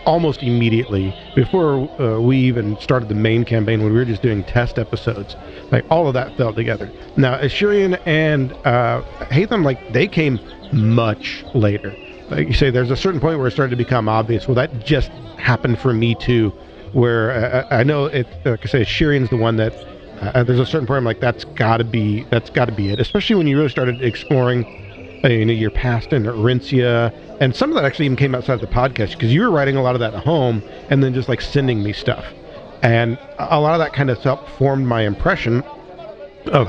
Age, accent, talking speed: 40-59, American, 220 wpm